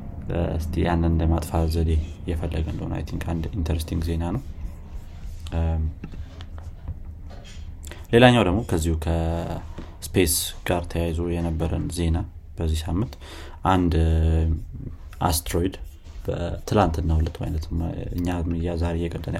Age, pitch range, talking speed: 30-49, 80-90 Hz, 75 wpm